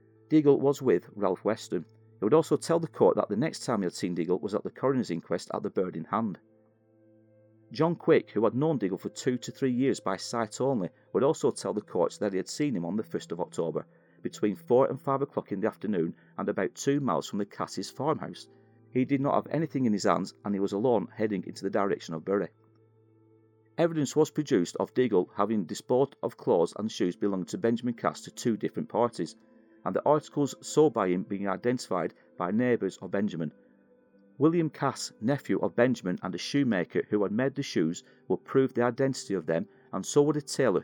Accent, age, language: British, 40-59, English